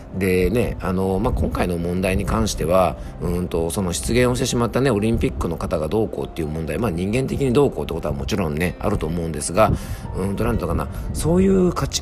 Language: Japanese